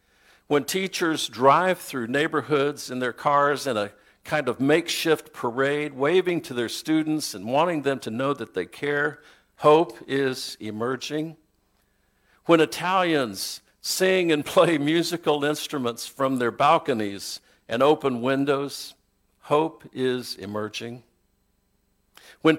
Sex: male